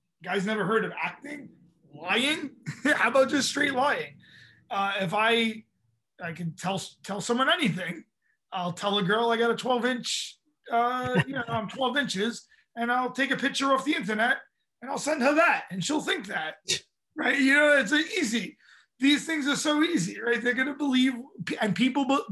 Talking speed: 185 wpm